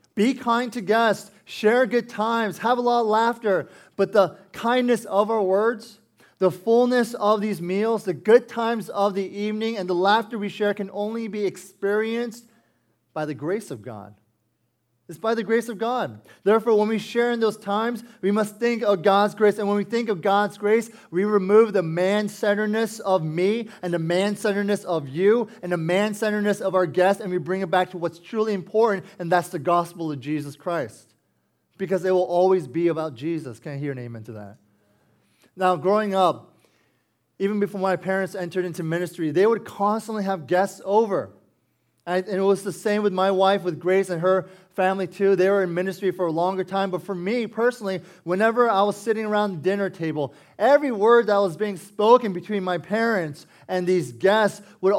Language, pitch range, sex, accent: English, 175-220 Hz, male, American